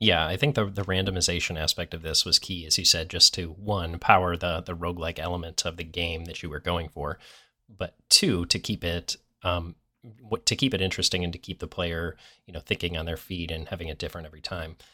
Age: 30-49